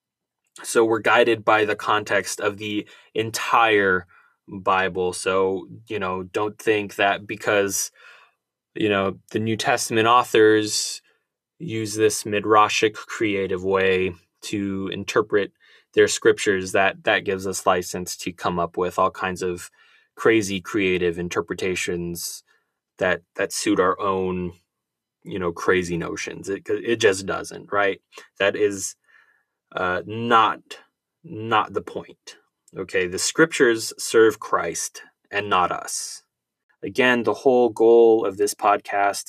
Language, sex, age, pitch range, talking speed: English, male, 20-39, 95-115 Hz, 125 wpm